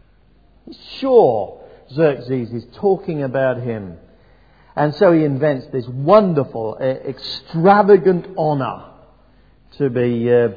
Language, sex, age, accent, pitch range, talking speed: English, male, 50-69, British, 115-155 Hz, 110 wpm